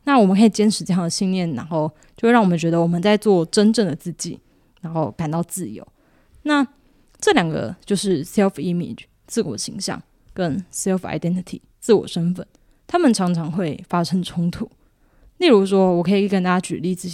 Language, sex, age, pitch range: Chinese, female, 20-39, 170-205 Hz